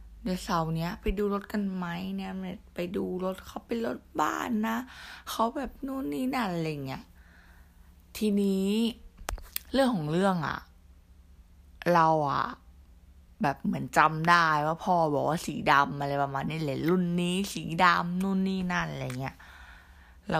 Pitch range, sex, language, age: 135-185 Hz, female, Thai, 20-39